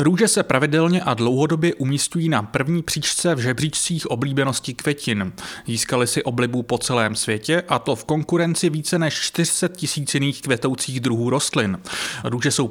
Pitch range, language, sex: 120-170 Hz, English, male